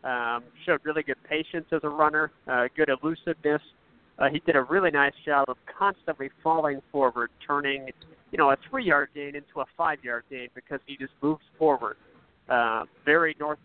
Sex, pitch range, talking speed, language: male, 130-155 Hz, 175 wpm, English